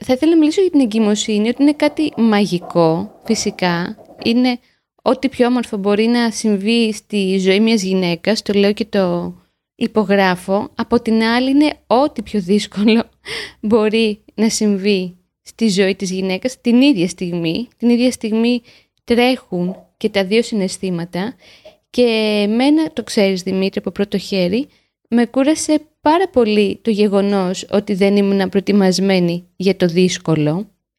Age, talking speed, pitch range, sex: 20-39, 145 wpm, 195-250 Hz, female